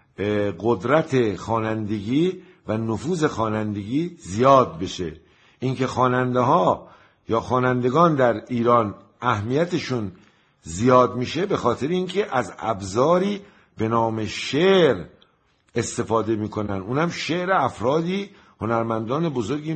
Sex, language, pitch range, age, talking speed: male, Persian, 115-150 Hz, 50-69, 95 wpm